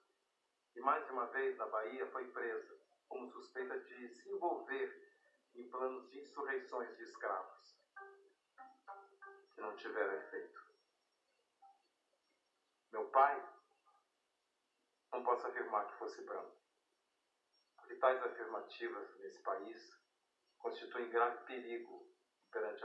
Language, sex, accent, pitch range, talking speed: Portuguese, male, Brazilian, 370-435 Hz, 105 wpm